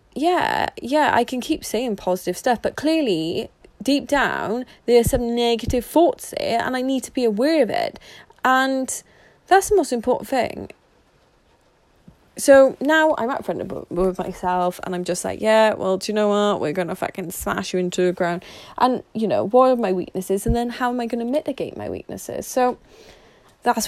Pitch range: 180-245 Hz